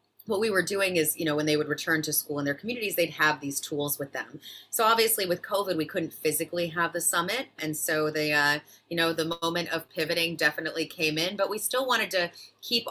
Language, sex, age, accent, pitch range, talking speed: English, female, 30-49, American, 150-185 Hz, 235 wpm